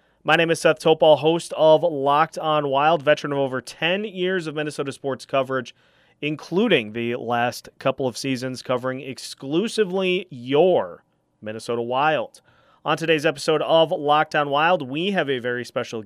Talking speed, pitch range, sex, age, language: 155 wpm, 125-155 Hz, male, 30-49, English